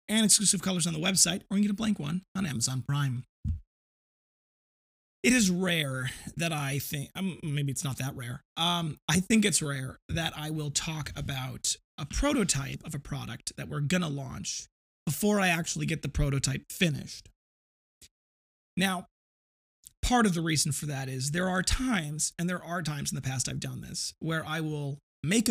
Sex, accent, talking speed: male, American, 190 wpm